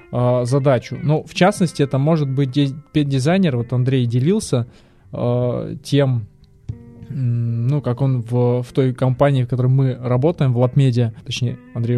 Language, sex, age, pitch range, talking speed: Russian, male, 20-39, 125-155 Hz, 140 wpm